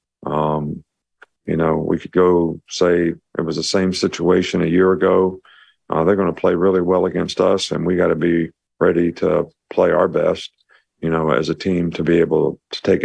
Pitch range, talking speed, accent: 85-100 Hz, 200 wpm, American